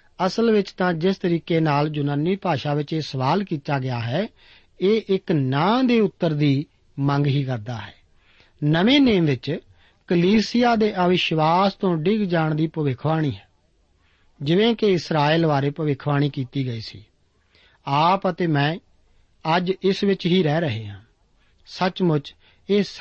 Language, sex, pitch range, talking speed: Punjabi, male, 140-190 Hz, 125 wpm